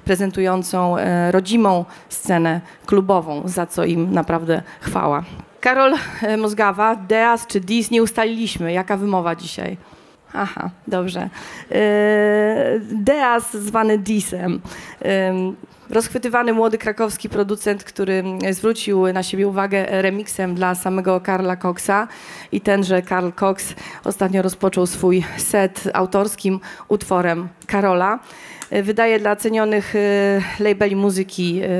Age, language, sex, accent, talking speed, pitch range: 30-49, Polish, female, native, 100 wpm, 185-210 Hz